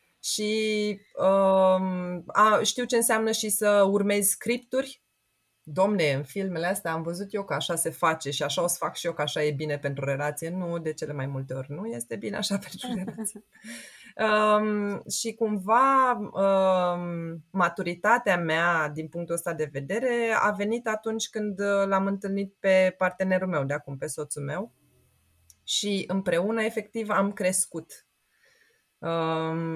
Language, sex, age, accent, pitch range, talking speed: Romanian, female, 20-39, native, 165-220 Hz, 155 wpm